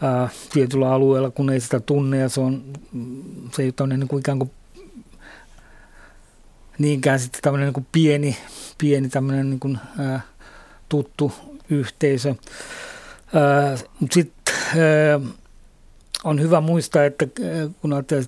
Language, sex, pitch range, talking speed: Finnish, male, 135-150 Hz, 110 wpm